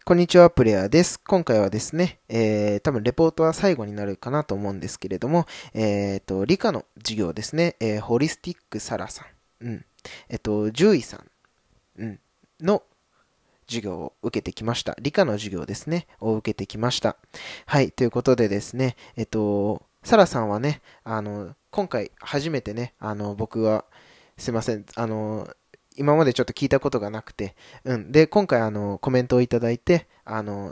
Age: 20-39